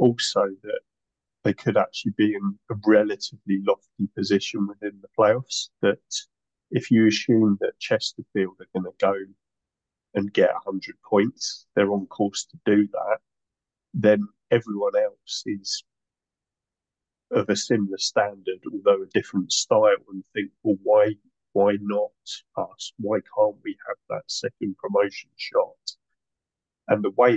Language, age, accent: English, 30-49, British